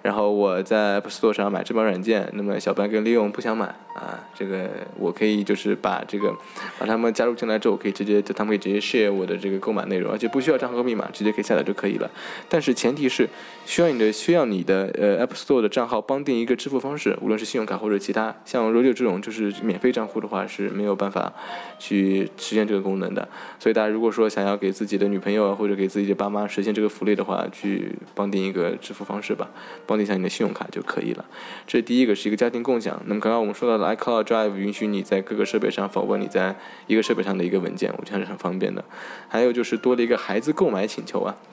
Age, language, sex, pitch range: 10-29, Chinese, male, 100-115 Hz